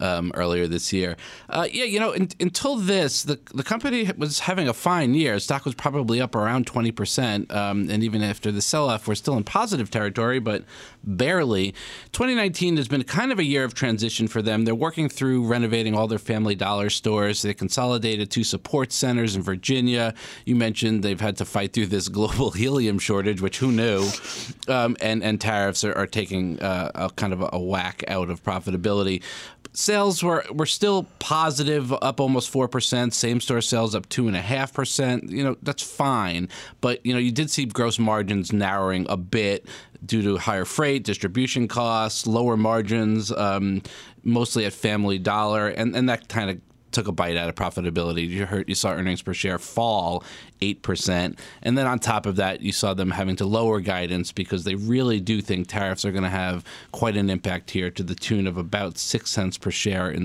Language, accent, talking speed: English, American, 200 wpm